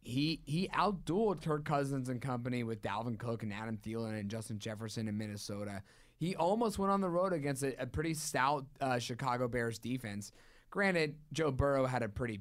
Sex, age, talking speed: male, 20-39, 190 wpm